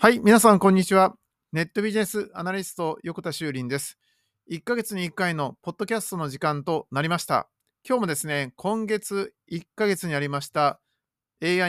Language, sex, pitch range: Japanese, male, 130-185 Hz